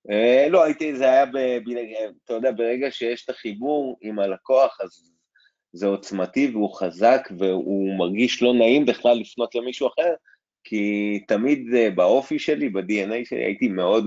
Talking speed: 160 wpm